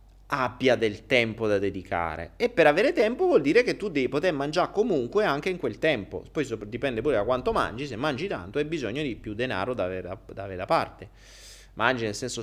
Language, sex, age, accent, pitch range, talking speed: Italian, male, 30-49, native, 100-155 Hz, 205 wpm